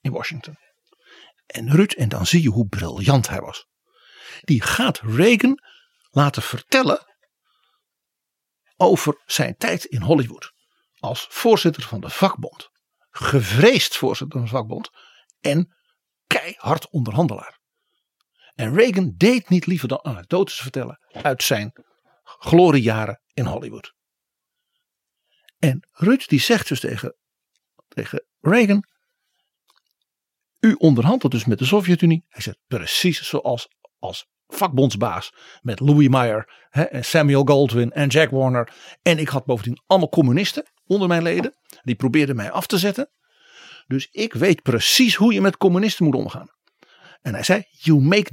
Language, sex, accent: Dutch, male, Dutch